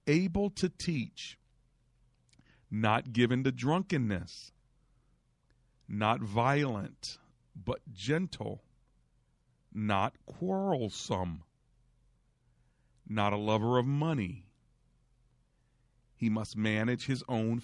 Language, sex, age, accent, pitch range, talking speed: English, male, 40-59, American, 105-130 Hz, 80 wpm